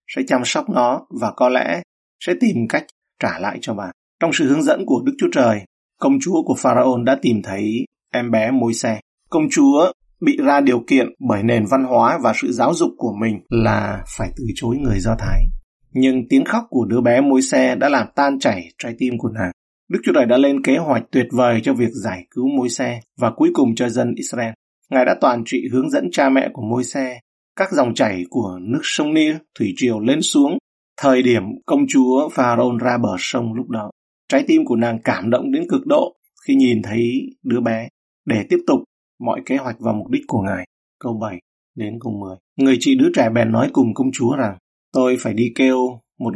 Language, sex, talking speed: Vietnamese, male, 220 wpm